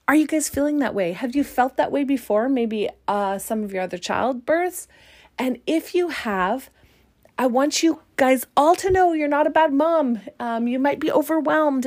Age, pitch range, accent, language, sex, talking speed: 30-49, 220-295 Hz, American, English, female, 200 wpm